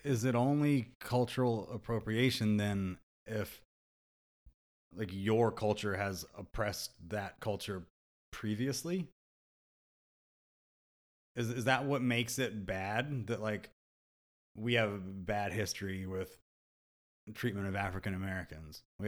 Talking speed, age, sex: 105 wpm, 30-49, male